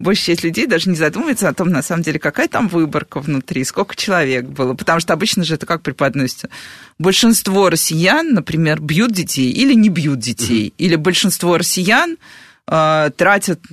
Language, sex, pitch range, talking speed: Russian, female, 155-195 Hz, 165 wpm